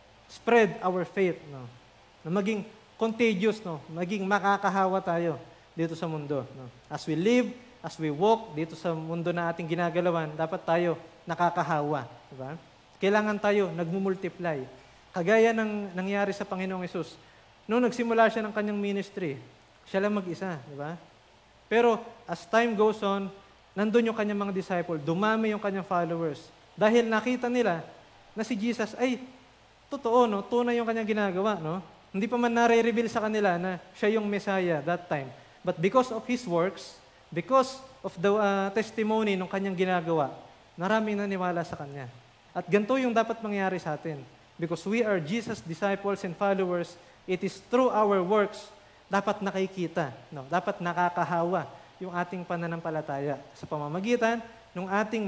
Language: English